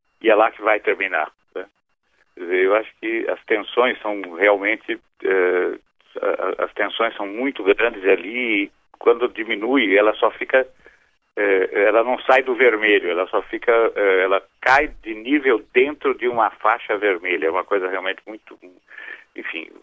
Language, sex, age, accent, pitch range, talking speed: Portuguese, male, 60-79, Brazilian, 345-440 Hz, 155 wpm